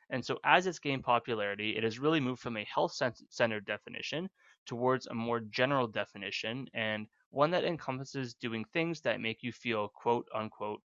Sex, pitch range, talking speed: male, 110-140 Hz, 175 wpm